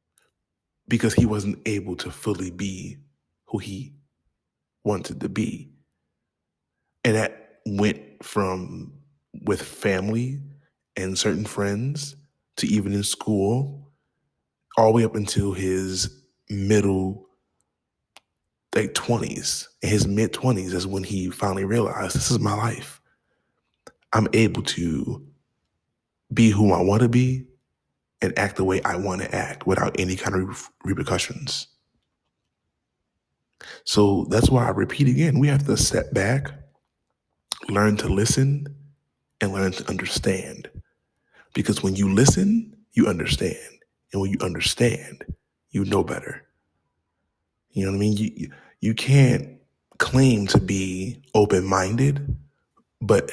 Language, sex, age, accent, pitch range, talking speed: English, male, 20-39, American, 95-125 Hz, 125 wpm